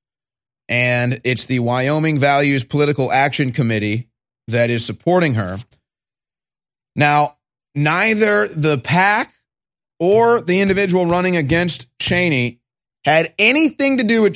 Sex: male